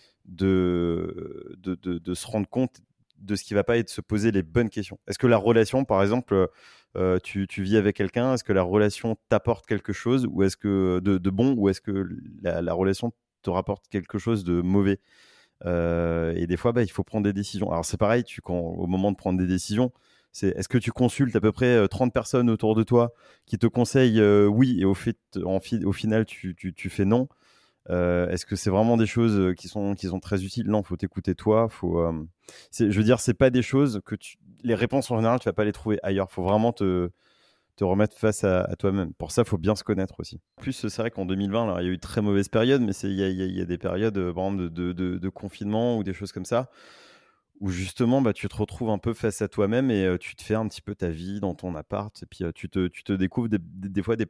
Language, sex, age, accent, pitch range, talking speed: French, male, 30-49, French, 95-115 Hz, 260 wpm